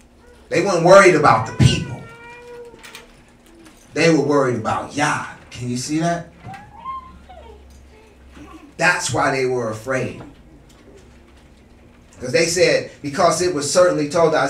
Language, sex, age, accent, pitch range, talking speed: English, male, 30-49, American, 105-155 Hz, 120 wpm